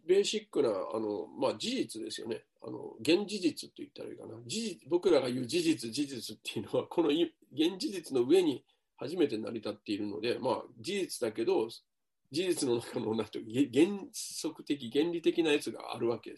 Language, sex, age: Japanese, male, 40-59